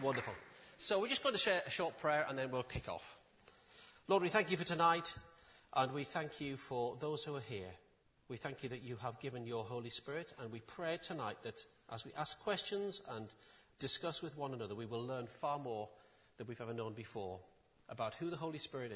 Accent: British